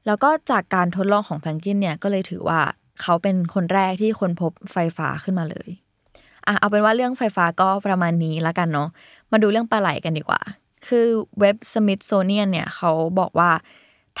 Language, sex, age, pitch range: Thai, female, 20-39, 165-210 Hz